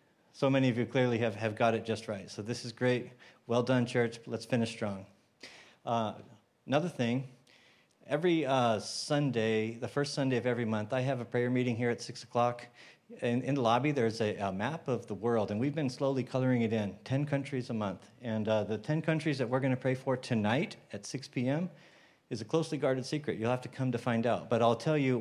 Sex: male